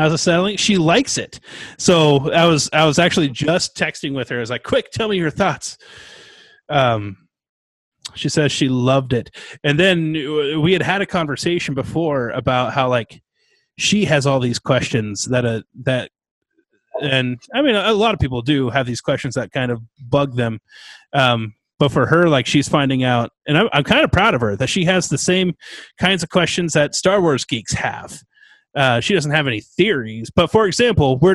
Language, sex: English, male